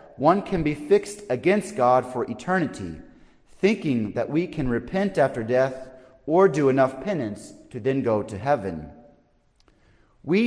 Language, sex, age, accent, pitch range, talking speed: English, male, 30-49, American, 125-170 Hz, 145 wpm